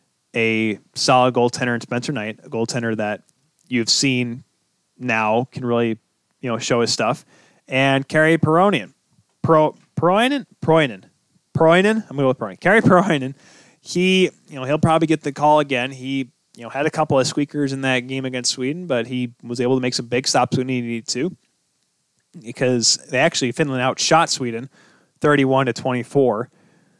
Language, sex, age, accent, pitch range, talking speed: English, male, 20-39, American, 125-155 Hz, 175 wpm